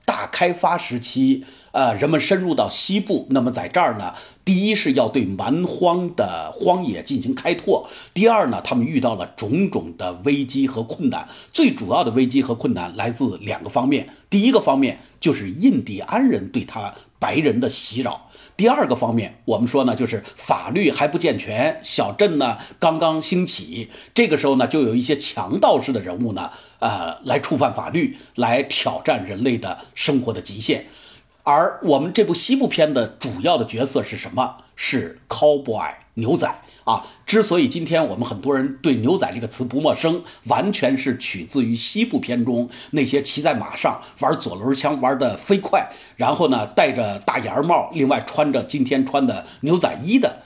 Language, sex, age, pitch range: Chinese, male, 50-69, 130-205 Hz